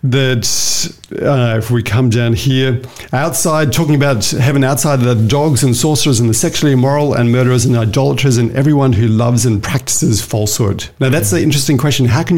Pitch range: 115-140 Hz